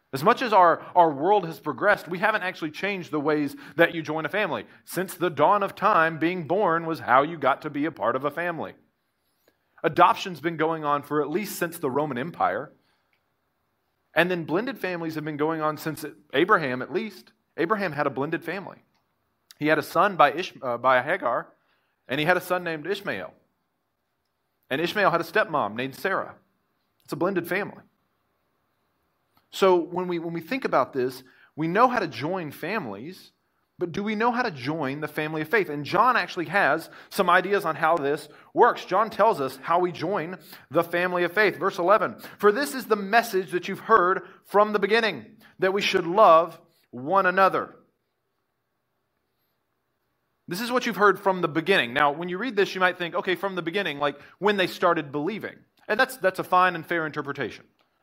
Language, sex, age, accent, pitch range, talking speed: English, male, 40-59, American, 150-190 Hz, 195 wpm